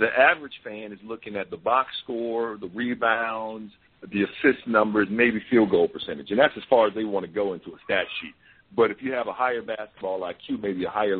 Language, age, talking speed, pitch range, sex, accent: English, 50-69, 225 wpm, 105-155 Hz, male, American